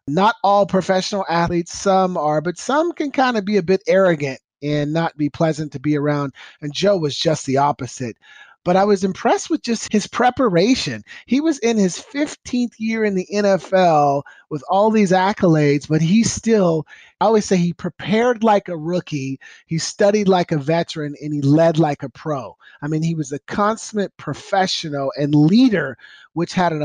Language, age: English, 30-49